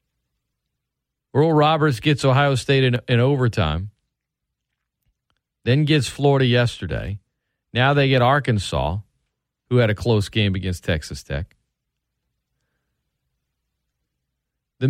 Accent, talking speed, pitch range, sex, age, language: American, 100 wpm, 95-140 Hz, male, 40-59, English